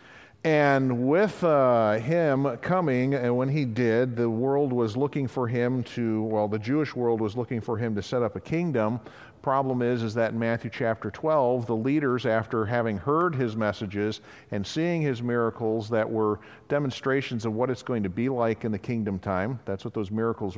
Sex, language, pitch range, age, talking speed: male, English, 110-135 Hz, 50-69, 190 wpm